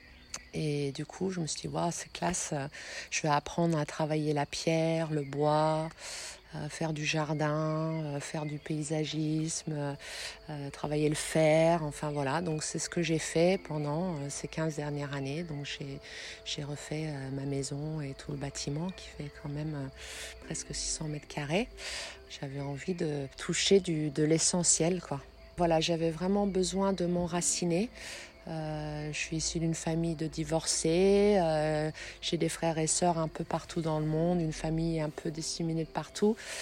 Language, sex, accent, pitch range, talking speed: French, female, French, 150-170 Hz, 170 wpm